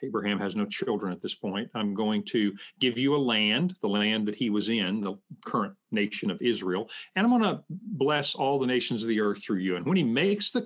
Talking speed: 240 wpm